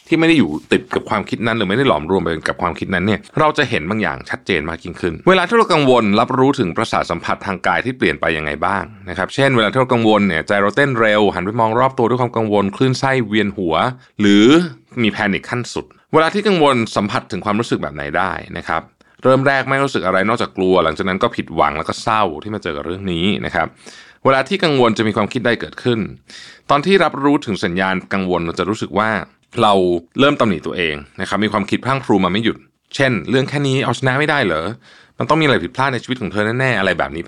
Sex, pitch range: male, 95-135 Hz